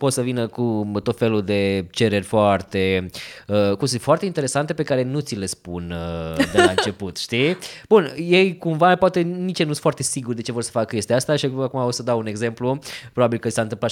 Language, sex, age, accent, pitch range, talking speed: Romanian, male, 20-39, native, 100-140 Hz, 225 wpm